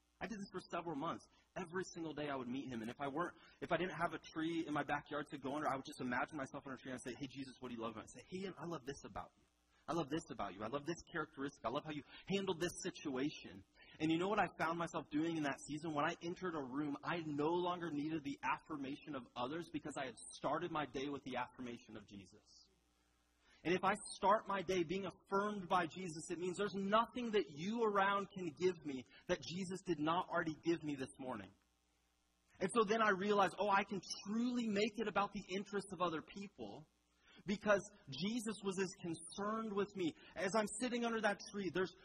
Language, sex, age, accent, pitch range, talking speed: English, male, 30-49, American, 140-195 Hz, 235 wpm